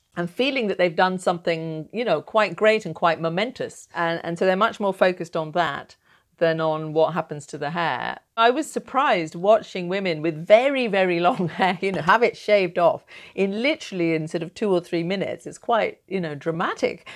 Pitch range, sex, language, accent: 165-215 Hz, female, English, British